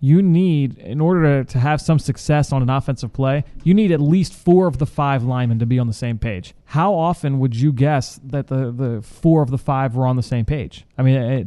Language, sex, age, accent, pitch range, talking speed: English, male, 30-49, American, 125-150 Hz, 245 wpm